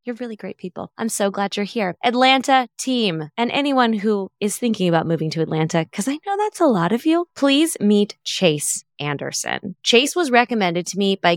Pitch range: 165-230 Hz